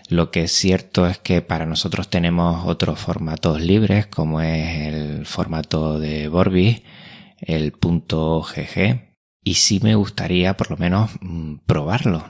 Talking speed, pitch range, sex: 140 wpm, 80-90 Hz, male